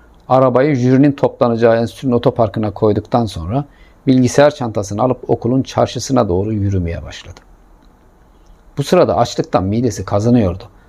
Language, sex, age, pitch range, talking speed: Turkish, male, 50-69, 100-135 Hz, 110 wpm